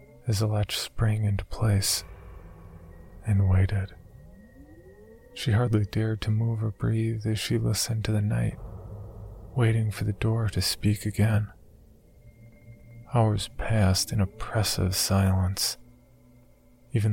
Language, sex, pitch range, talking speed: English, male, 95-110 Hz, 115 wpm